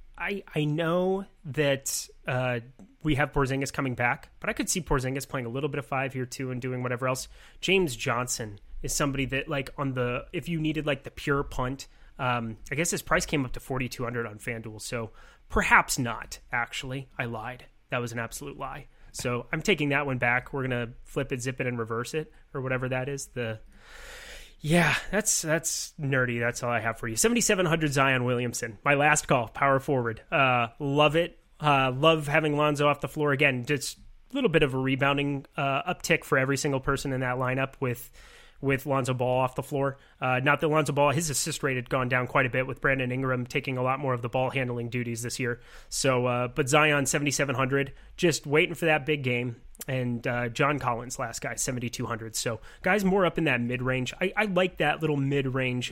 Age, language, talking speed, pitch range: 30-49, English, 210 wpm, 125-150 Hz